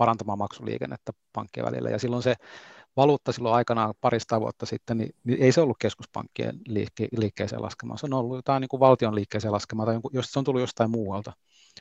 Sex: male